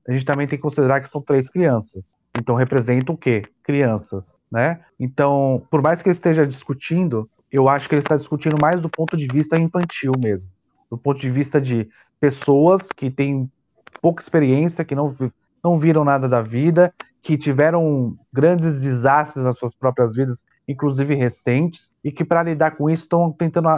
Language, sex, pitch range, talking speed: Portuguese, male, 130-165 Hz, 180 wpm